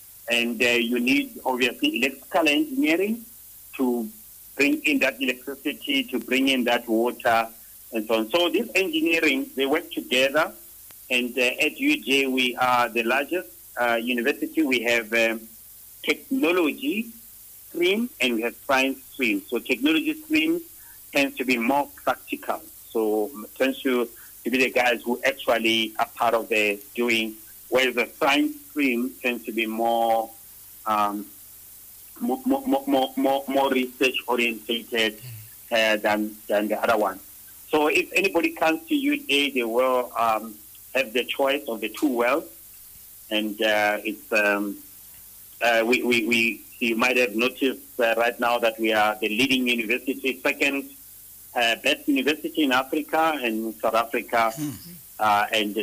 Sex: male